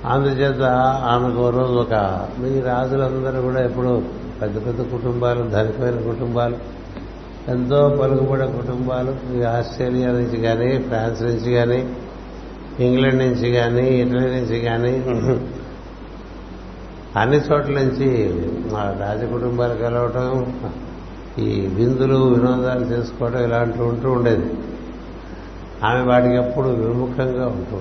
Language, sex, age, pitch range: Telugu, male, 60-79, 110-125 Hz